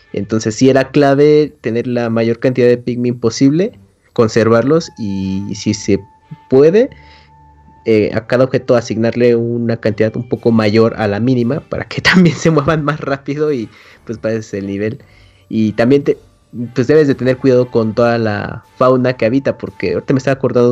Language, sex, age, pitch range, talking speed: Spanish, male, 30-49, 110-140 Hz, 175 wpm